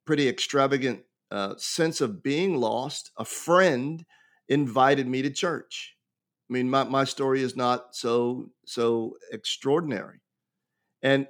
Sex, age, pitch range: male, 50-69, 125-140 Hz